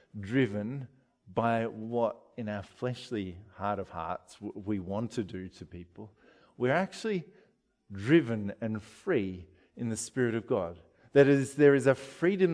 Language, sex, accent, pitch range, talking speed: English, male, Australian, 105-145 Hz, 150 wpm